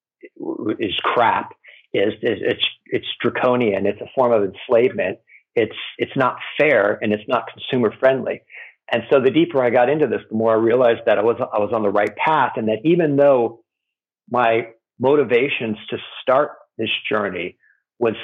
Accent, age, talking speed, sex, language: American, 50-69, 175 wpm, male, English